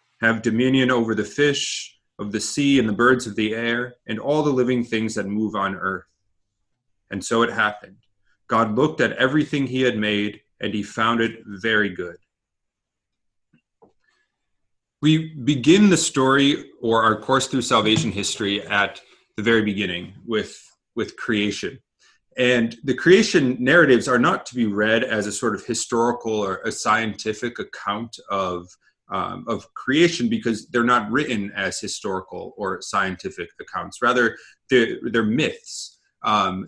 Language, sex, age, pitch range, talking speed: English, male, 30-49, 105-135 Hz, 150 wpm